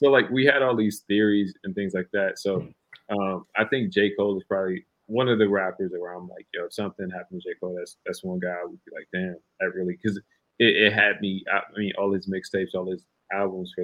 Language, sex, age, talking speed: English, male, 30-49, 250 wpm